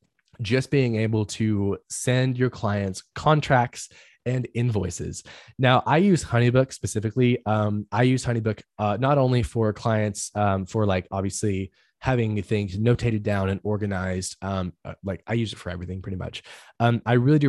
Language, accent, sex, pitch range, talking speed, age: English, American, male, 105-125 Hz, 160 wpm, 10-29